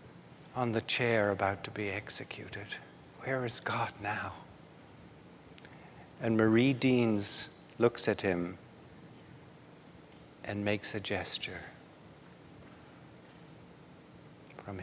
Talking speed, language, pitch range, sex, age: 90 wpm, English, 110-145 Hz, male, 60-79